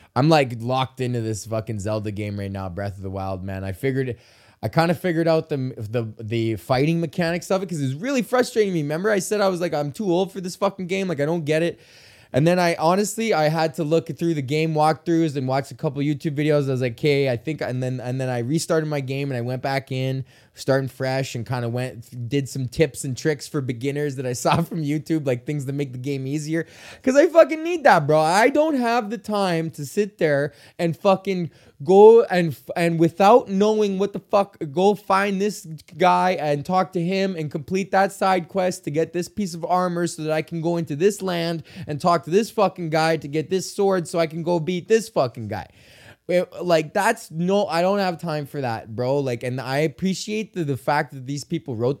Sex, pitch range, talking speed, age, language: male, 135-190 Hz, 235 wpm, 20-39, English